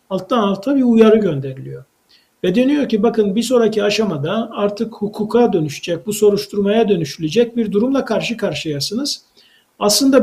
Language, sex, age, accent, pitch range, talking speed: Turkish, male, 50-69, native, 195-235 Hz, 135 wpm